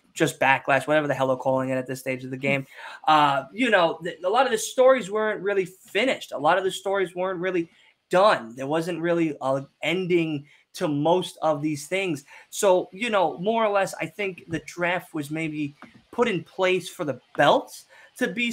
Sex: male